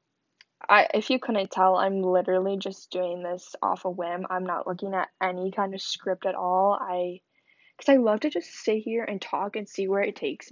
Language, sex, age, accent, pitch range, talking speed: English, female, 10-29, American, 195-260 Hz, 215 wpm